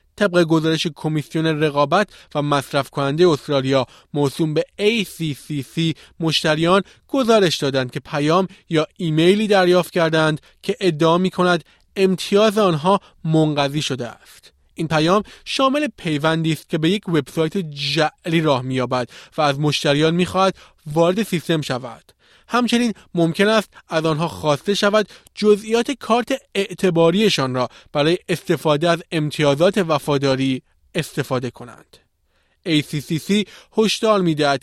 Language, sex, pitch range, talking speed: Persian, male, 145-190 Hz, 120 wpm